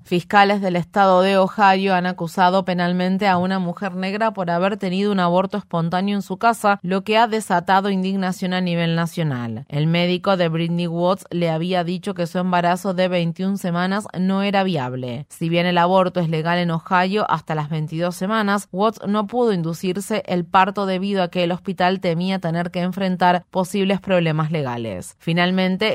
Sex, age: female, 30-49